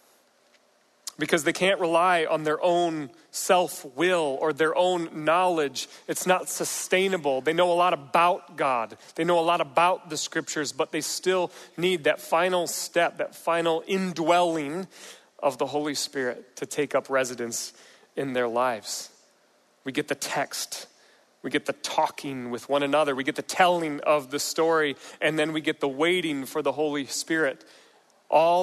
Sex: male